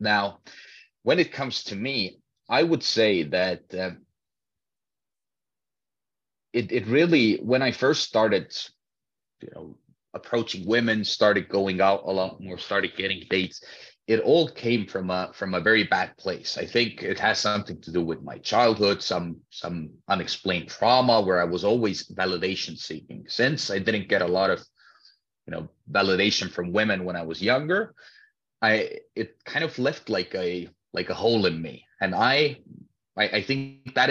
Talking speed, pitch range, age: 160 wpm, 90-120 Hz, 30-49